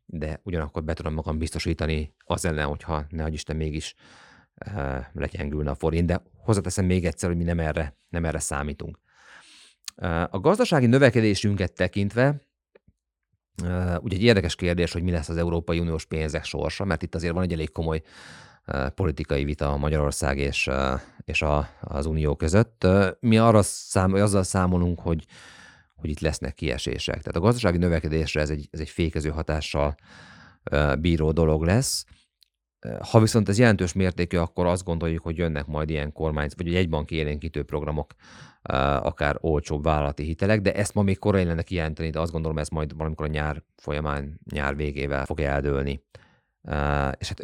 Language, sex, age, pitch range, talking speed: Hungarian, male, 30-49, 75-90 Hz, 165 wpm